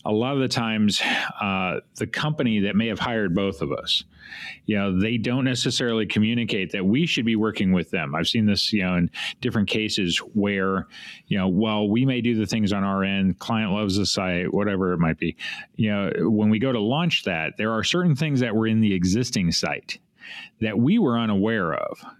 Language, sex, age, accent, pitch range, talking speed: English, male, 40-59, American, 100-125 Hz, 215 wpm